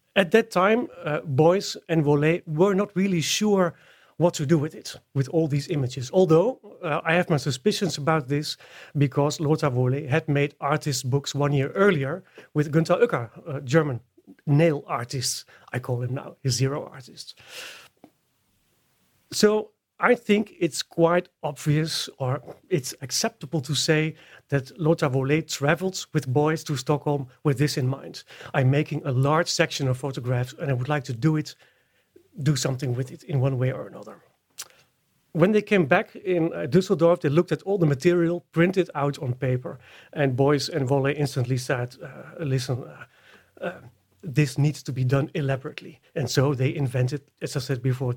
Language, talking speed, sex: Swedish, 175 wpm, male